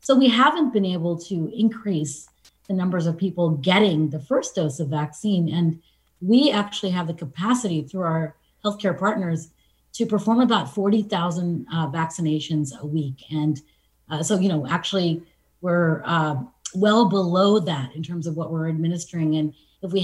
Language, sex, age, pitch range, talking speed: English, female, 30-49, 160-210 Hz, 165 wpm